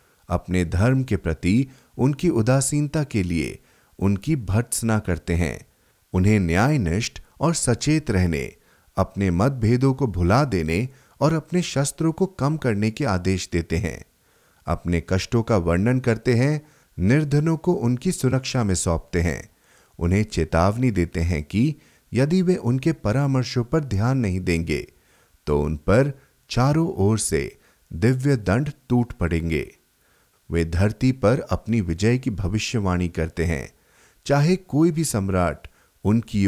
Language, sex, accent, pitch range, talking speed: Hindi, male, native, 90-135 Hz, 135 wpm